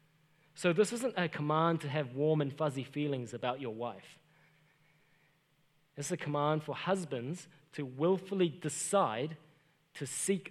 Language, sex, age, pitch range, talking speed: English, male, 20-39, 145-175 Hz, 135 wpm